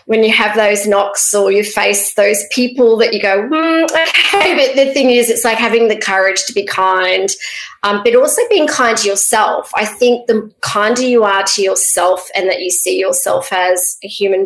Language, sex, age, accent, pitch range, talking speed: English, female, 30-49, Australian, 195-235 Hz, 210 wpm